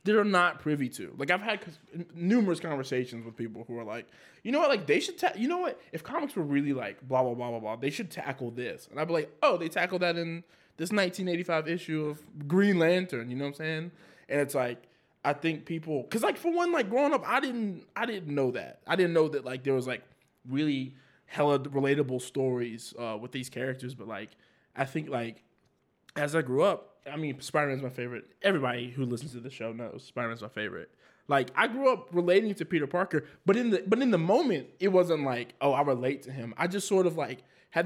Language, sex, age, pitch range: English, male, 20-39, 130-180 Hz